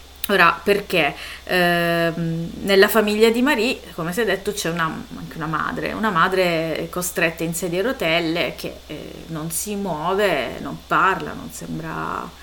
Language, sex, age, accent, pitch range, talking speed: Italian, female, 30-49, native, 165-210 Hz, 155 wpm